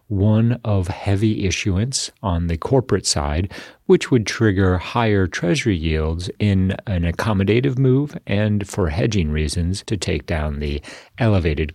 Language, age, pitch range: English, 40-59, 80-105 Hz